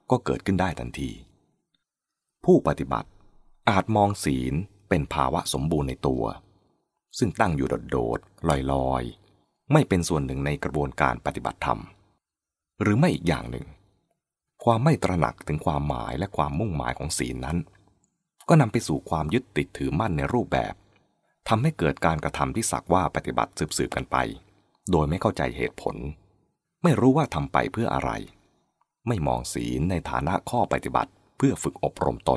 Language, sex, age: English, male, 20-39